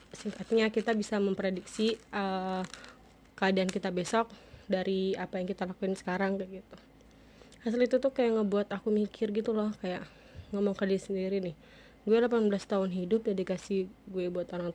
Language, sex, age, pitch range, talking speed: Indonesian, female, 20-39, 195-220 Hz, 165 wpm